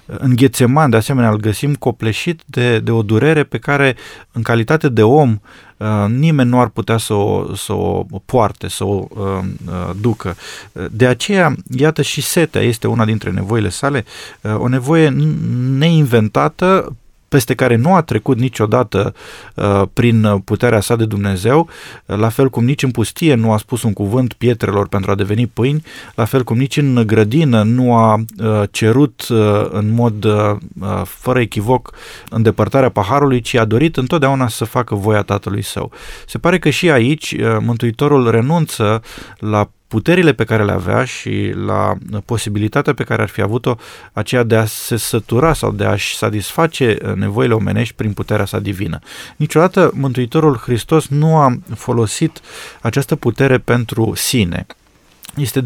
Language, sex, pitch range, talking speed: Romanian, male, 110-135 Hz, 150 wpm